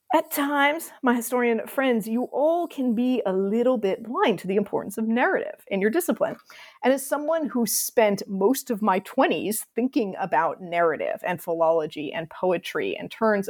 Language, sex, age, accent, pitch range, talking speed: English, female, 40-59, American, 190-265 Hz, 175 wpm